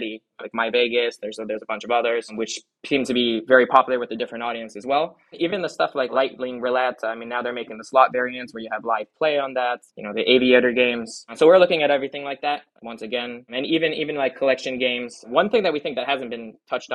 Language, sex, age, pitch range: English, male, 20-39, 120-145 Hz